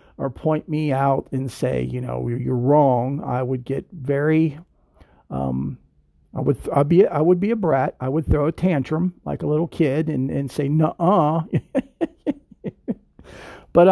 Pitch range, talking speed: 130-170 Hz, 170 wpm